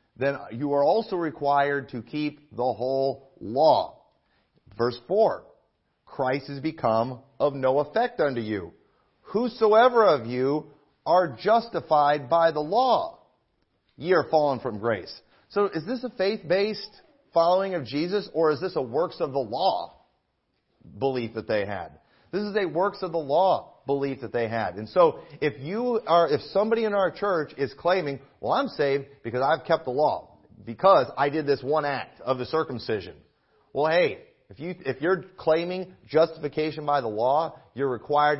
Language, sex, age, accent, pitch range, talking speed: English, male, 40-59, American, 135-195 Hz, 165 wpm